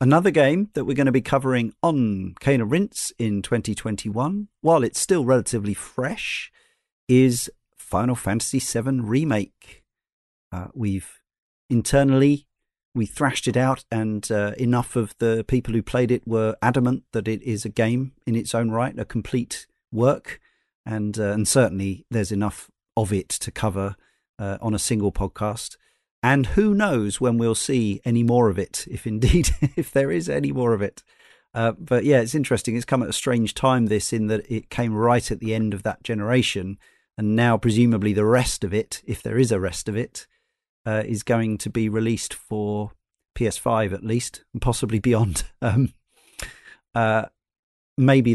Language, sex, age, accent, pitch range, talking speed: English, male, 40-59, British, 105-125 Hz, 175 wpm